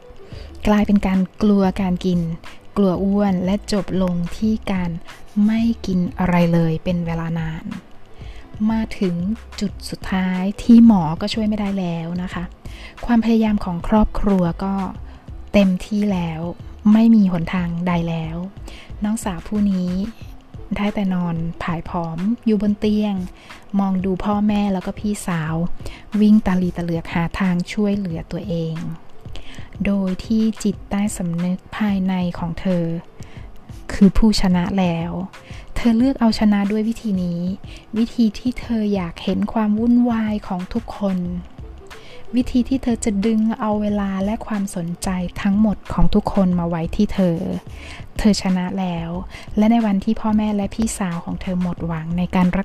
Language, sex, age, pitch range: Thai, female, 20-39, 175-210 Hz